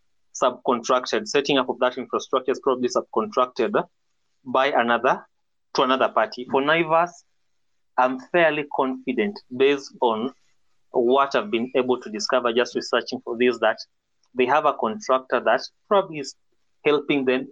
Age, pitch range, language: 30-49, 125-145 Hz, English